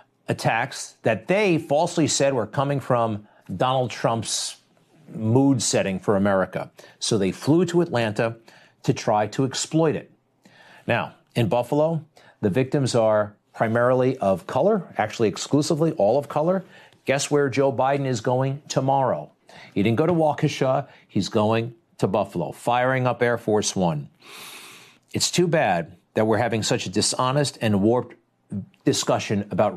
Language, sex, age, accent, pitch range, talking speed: English, male, 50-69, American, 120-160 Hz, 145 wpm